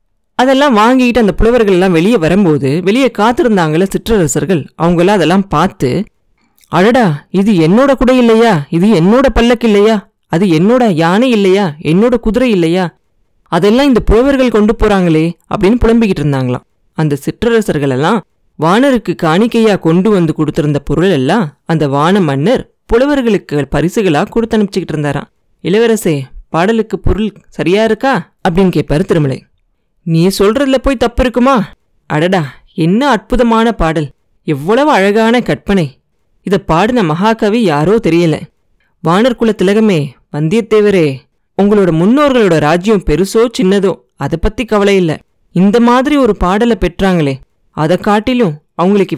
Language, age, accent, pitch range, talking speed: Tamil, 20-39, native, 165-225 Hz, 120 wpm